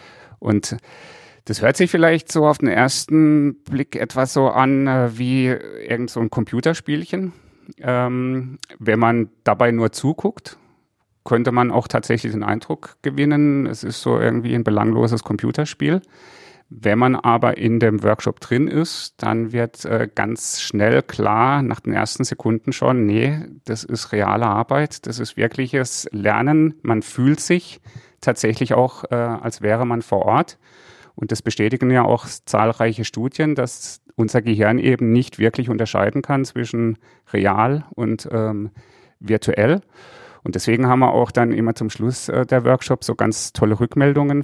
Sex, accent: male, German